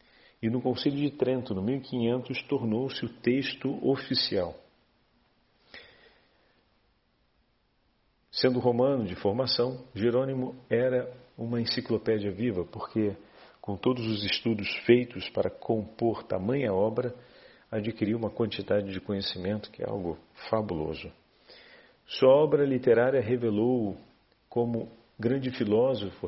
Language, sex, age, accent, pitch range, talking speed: Portuguese, male, 50-69, Brazilian, 105-130 Hz, 105 wpm